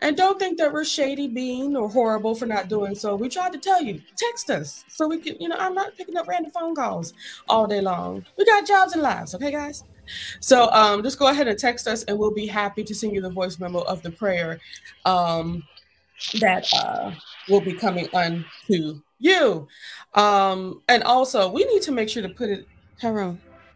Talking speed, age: 210 wpm, 20-39